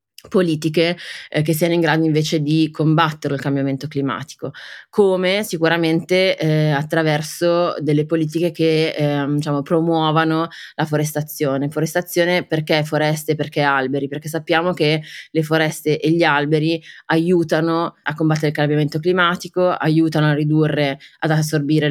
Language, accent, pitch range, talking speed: Italian, native, 150-165 Hz, 135 wpm